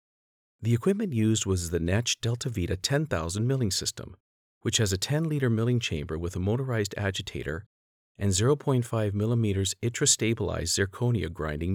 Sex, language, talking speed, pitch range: male, English, 140 wpm, 90-120 Hz